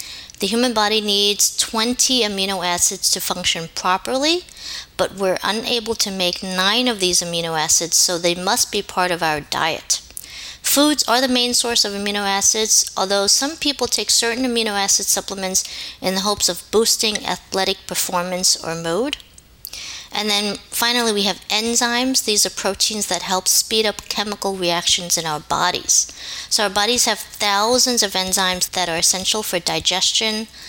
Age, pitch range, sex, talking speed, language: 40-59, 180-220 Hz, female, 160 wpm, English